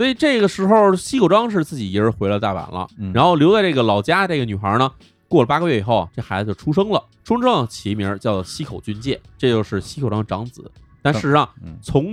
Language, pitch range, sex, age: Chinese, 100-145 Hz, male, 20-39